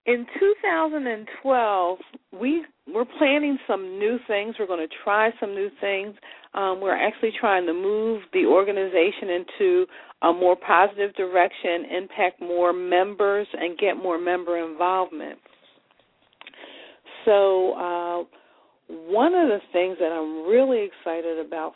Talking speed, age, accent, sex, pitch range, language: 125 wpm, 50-69, American, female, 170-215 Hz, English